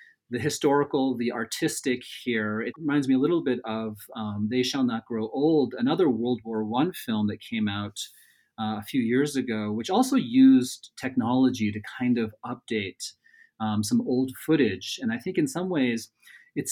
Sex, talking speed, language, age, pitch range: male, 180 wpm, English, 30-49, 110-150 Hz